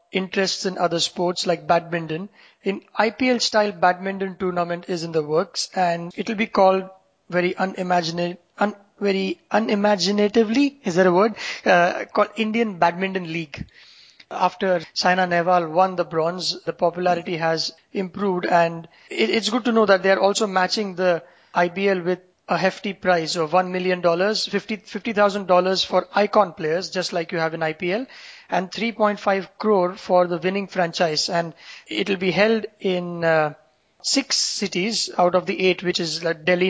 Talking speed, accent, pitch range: 160 wpm, Indian, 170-200 Hz